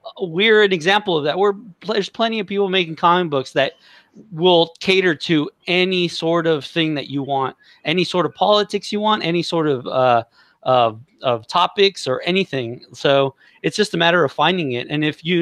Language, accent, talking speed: English, American, 195 wpm